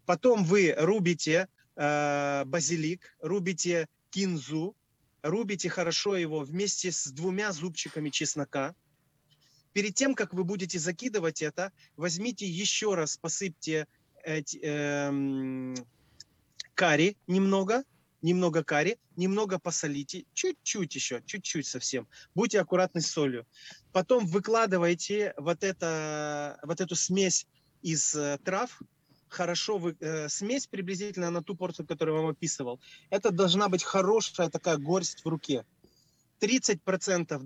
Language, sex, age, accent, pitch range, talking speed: Ukrainian, male, 30-49, native, 150-195 Hz, 115 wpm